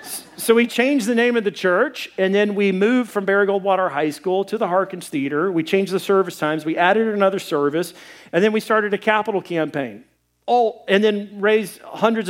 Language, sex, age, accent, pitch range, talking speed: English, male, 40-59, American, 140-205 Hz, 205 wpm